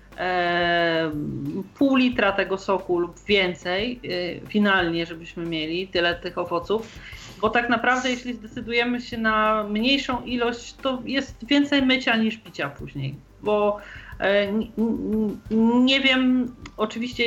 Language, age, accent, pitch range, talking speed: Polish, 40-59, native, 195-235 Hz, 110 wpm